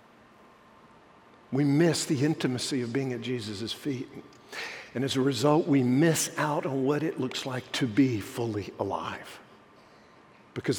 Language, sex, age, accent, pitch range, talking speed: English, male, 50-69, American, 135-185 Hz, 145 wpm